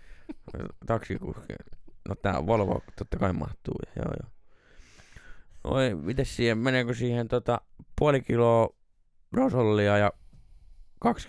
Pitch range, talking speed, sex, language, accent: 95-130 Hz, 105 wpm, male, Finnish, native